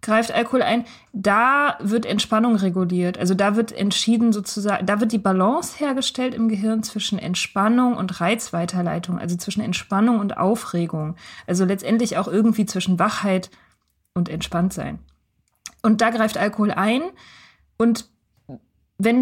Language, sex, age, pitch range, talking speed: German, female, 20-39, 195-240 Hz, 135 wpm